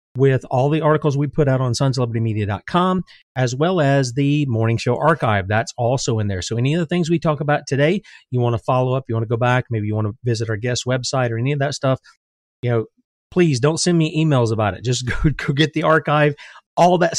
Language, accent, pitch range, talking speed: English, American, 120-155 Hz, 240 wpm